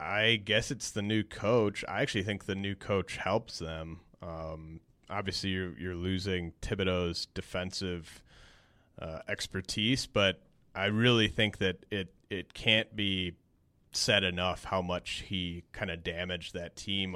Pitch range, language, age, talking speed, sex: 85-100 Hz, English, 30-49, 145 wpm, male